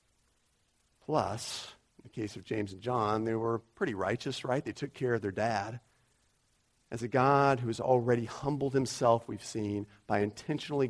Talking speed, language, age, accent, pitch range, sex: 170 wpm, English, 40-59, American, 105-135 Hz, male